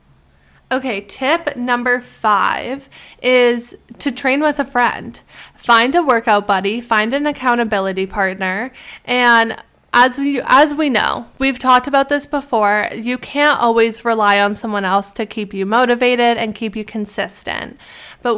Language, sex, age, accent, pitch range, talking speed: English, female, 10-29, American, 210-250 Hz, 145 wpm